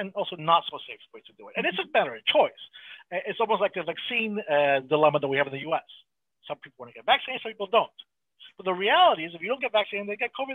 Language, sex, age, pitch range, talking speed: English, male, 40-59, 155-230 Hz, 275 wpm